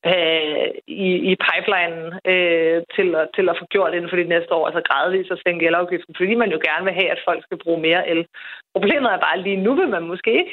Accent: native